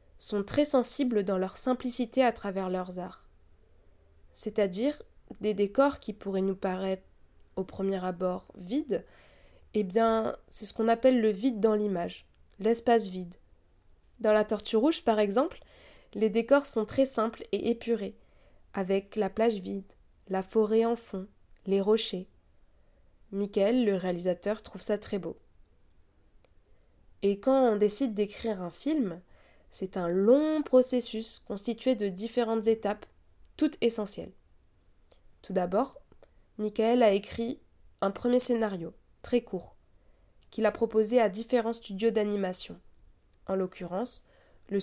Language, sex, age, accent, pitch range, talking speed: French, female, 20-39, French, 185-230 Hz, 135 wpm